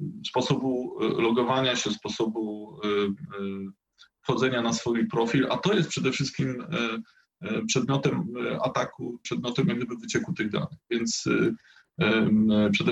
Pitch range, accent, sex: 110-140 Hz, native, male